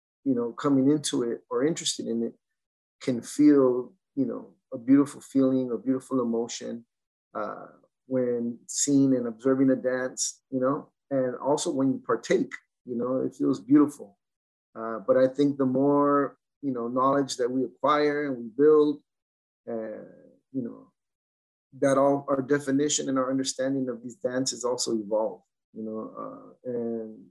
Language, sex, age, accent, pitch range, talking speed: English, male, 30-49, American, 115-140 Hz, 160 wpm